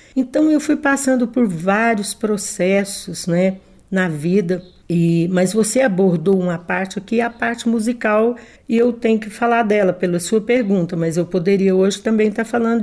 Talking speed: 175 wpm